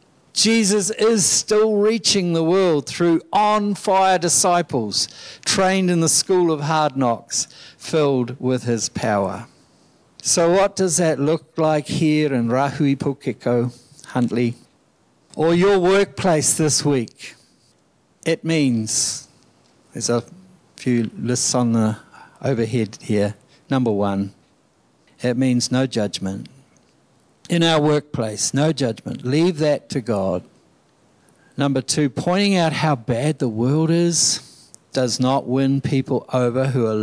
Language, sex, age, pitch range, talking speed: English, male, 60-79, 125-165 Hz, 125 wpm